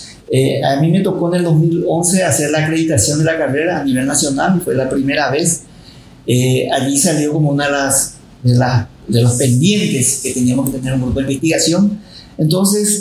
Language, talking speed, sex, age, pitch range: Spanish, 200 wpm, male, 40-59, 135-175 Hz